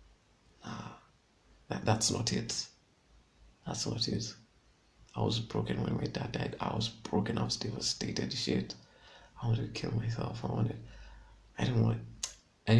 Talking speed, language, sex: 160 wpm, English, male